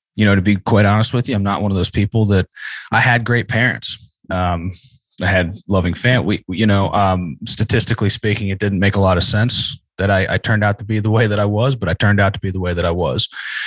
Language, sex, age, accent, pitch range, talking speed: English, male, 20-39, American, 95-115 Hz, 265 wpm